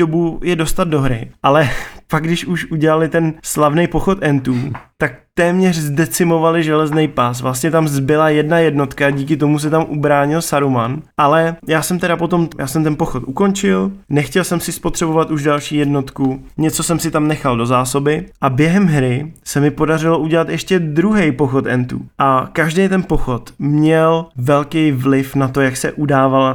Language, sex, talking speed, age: Czech, male, 175 wpm, 20-39